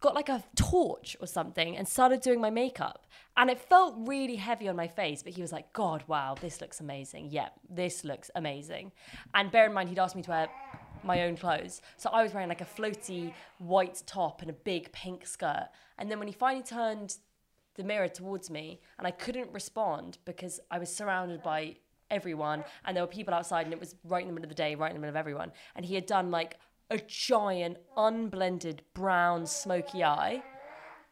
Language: English